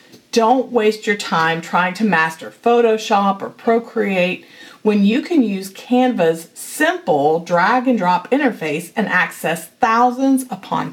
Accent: American